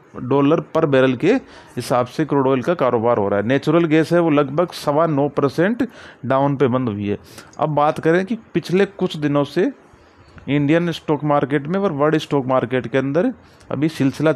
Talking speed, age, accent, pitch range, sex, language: 190 wpm, 30-49, native, 125-155 Hz, male, Hindi